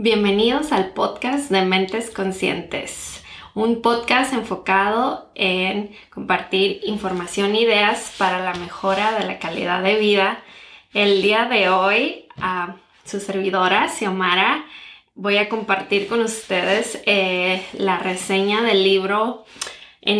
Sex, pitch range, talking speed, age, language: female, 190-225 Hz, 125 wpm, 20-39, Spanish